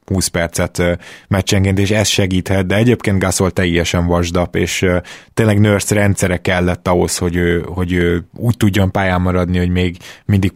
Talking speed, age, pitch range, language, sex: 160 wpm, 20-39, 95-110 Hz, Hungarian, male